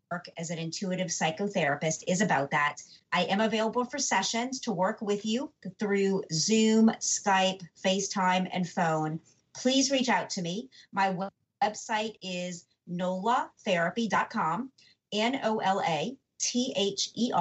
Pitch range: 180-220 Hz